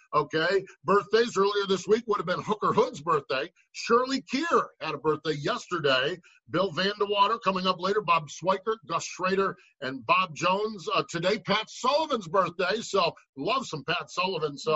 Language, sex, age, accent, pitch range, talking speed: English, male, 50-69, American, 165-220 Hz, 165 wpm